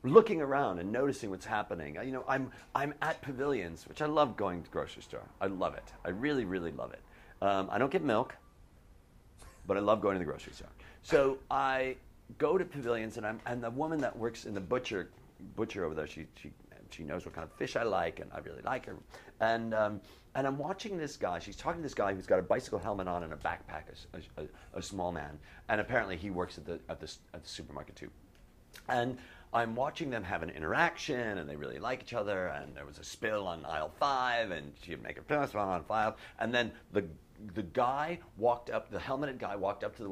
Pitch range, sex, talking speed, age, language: 90-135 Hz, male, 230 wpm, 40-59, English